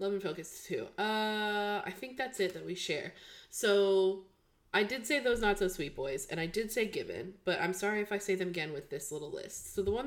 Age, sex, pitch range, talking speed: 20-39, female, 155-200 Hz, 245 wpm